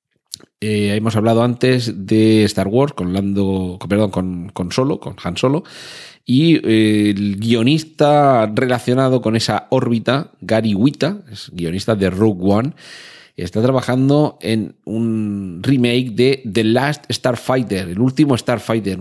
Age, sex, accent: 40-59, male, Spanish